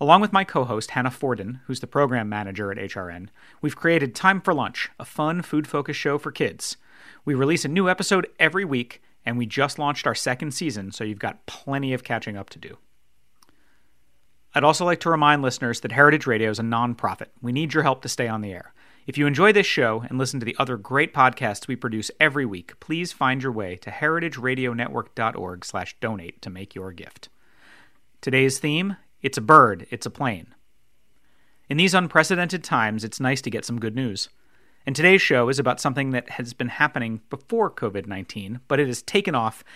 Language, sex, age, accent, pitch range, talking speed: English, male, 40-59, American, 115-150 Hz, 195 wpm